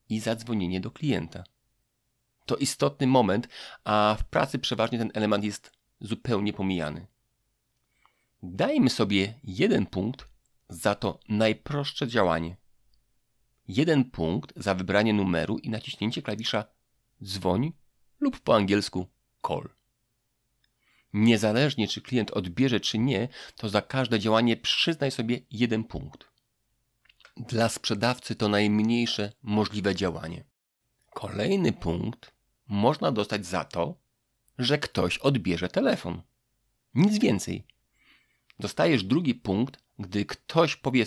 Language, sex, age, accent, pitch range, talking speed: Polish, male, 40-59, native, 105-125 Hz, 110 wpm